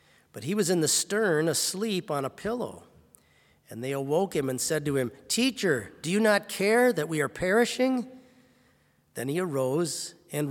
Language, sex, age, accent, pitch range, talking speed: English, male, 40-59, American, 135-190 Hz, 175 wpm